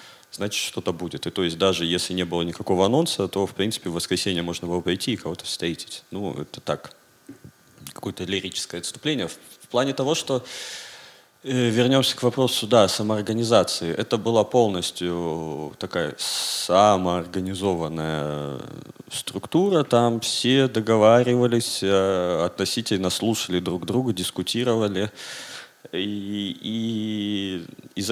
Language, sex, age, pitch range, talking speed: Russian, male, 30-49, 90-115 Hz, 115 wpm